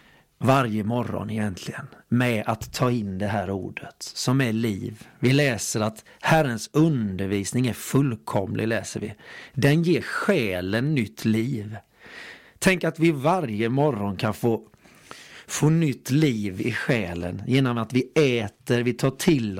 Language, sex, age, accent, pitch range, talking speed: Swedish, male, 40-59, native, 110-145 Hz, 140 wpm